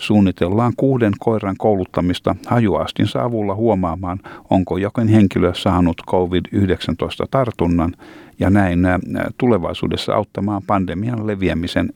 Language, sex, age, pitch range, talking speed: Finnish, male, 60-79, 90-115 Hz, 90 wpm